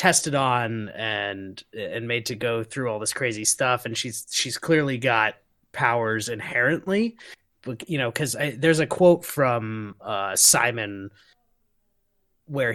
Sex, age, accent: male, 20-39, American